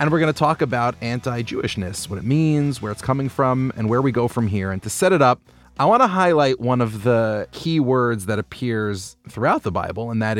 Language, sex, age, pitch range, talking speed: English, male, 30-49, 110-140 Hz, 235 wpm